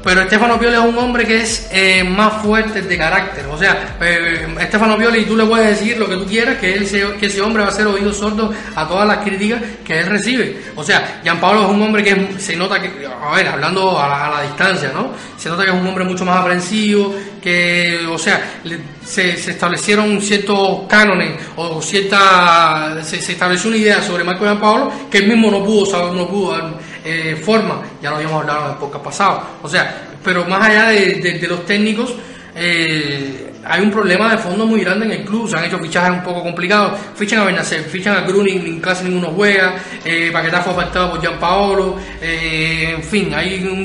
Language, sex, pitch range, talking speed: Spanish, male, 175-210 Hz, 225 wpm